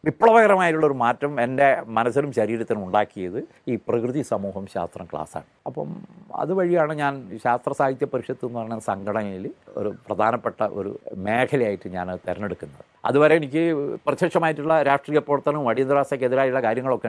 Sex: male